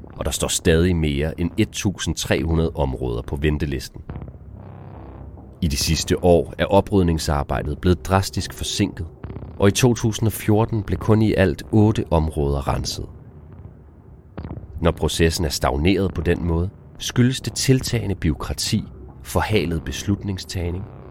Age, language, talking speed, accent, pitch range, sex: 30-49, Danish, 120 wpm, native, 75-95 Hz, male